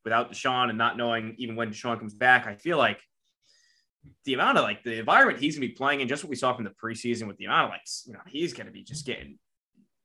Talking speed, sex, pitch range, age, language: 275 wpm, male, 110-130 Hz, 20-39, English